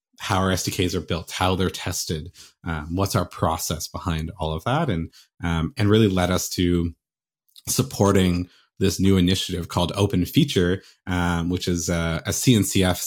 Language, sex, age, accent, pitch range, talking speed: English, male, 30-49, American, 80-95 Hz, 165 wpm